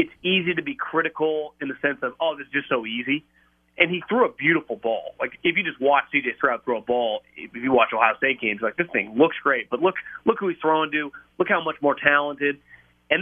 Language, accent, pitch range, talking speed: English, American, 145-185 Hz, 250 wpm